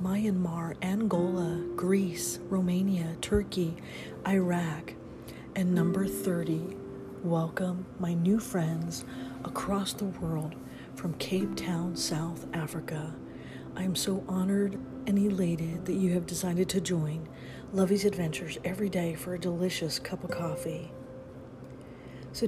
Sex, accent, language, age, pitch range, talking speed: female, American, English, 40-59, 165-195 Hz, 115 wpm